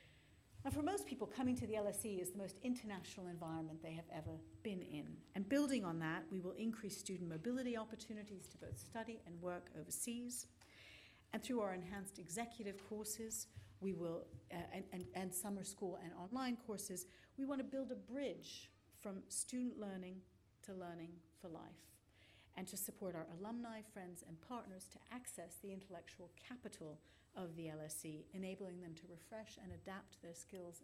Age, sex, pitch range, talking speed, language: 60-79, female, 165-215 Hz, 170 wpm, English